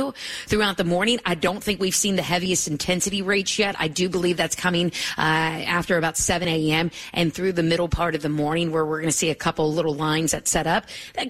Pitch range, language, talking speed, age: 165-215 Hz, English, 235 wpm, 30-49